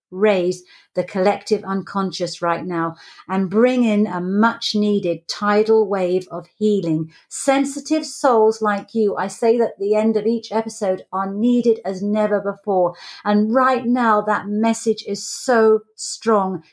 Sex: female